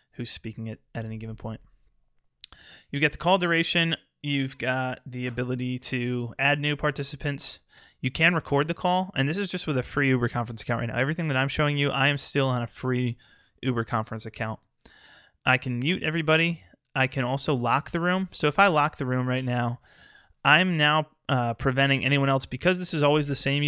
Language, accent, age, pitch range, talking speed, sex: English, American, 20-39, 120-140 Hz, 205 wpm, male